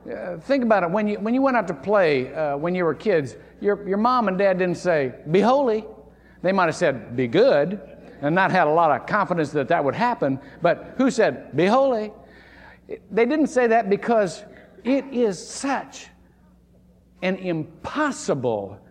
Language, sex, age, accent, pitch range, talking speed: English, male, 50-69, American, 145-215 Hz, 190 wpm